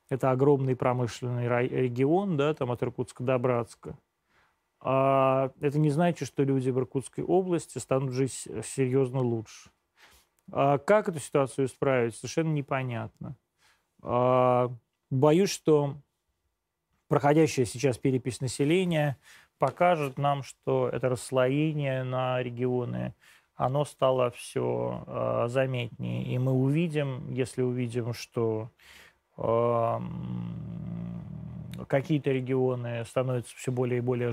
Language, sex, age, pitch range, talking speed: Russian, male, 30-49, 125-150 Hz, 100 wpm